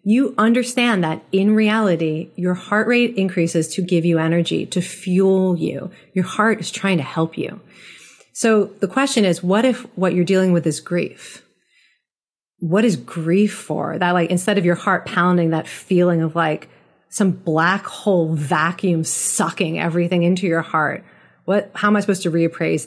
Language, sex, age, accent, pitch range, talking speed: English, female, 30-49, American, 165-205 Hz, 175 wpm